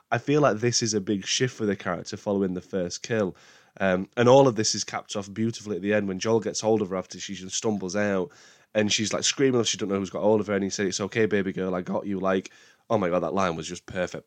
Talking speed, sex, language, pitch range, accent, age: 295 wpm, male, English, 95-120 Hz, British, 20-39